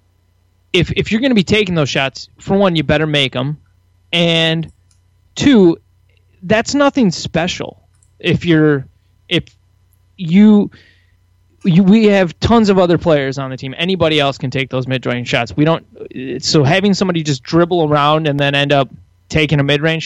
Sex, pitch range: male, 125-160 Hz